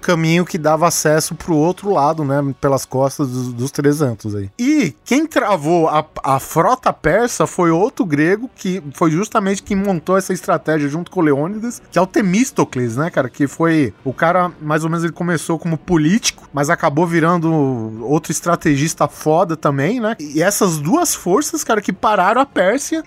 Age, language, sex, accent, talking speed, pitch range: 20-39, Portuguese, male, Brazilian, 180 wpm, 145-195 Hz